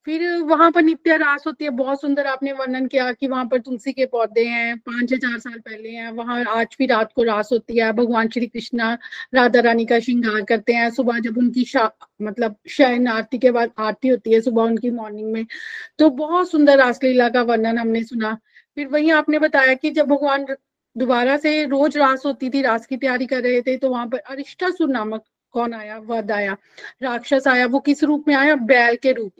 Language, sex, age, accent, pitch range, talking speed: Hindi, female, 30-49, native, 235-280 Hz, 210 wpm